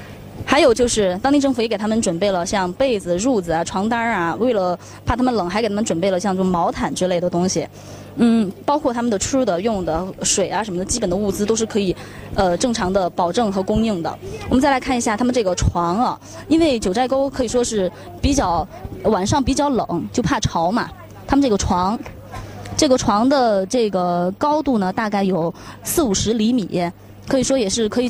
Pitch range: 185-260 Hz